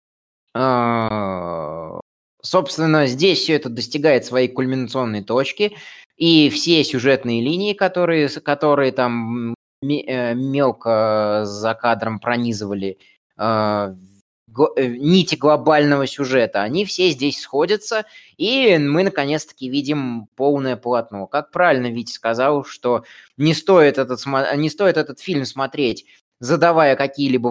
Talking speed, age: 110 wpm, 20-39